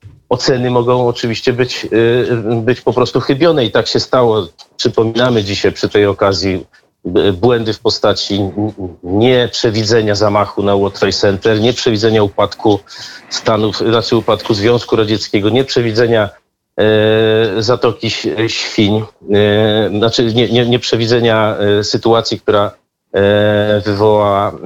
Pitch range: 105-120 Hz